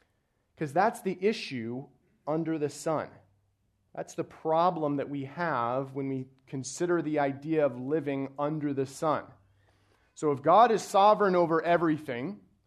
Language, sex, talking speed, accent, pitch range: English, male, 135 wpm, American, 145-190 Hz